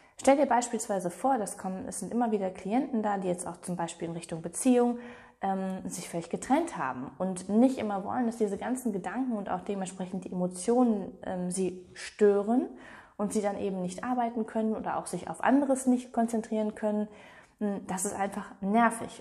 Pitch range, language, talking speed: 190-230 Hz, German, 180 wpm